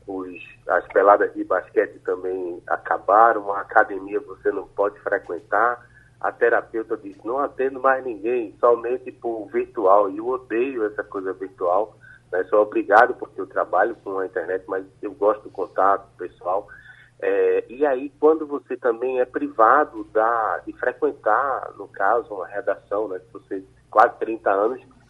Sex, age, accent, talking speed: male, 30-49, Brazilian, 155 wpm